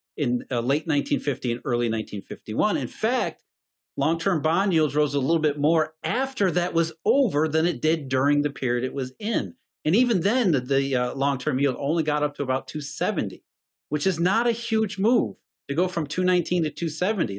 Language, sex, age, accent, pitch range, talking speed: English, male, 40-59, American, 145-205 Hz, 195 wpm